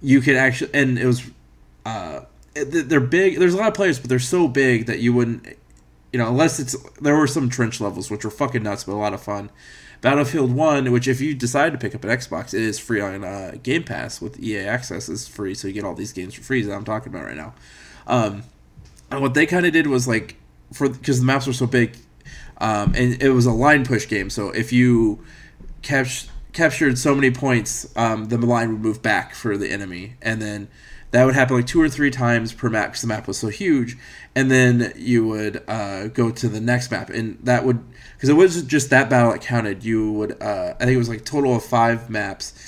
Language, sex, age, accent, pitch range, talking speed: English, male, 20-39, American, 105-130 Hz, 235 wpm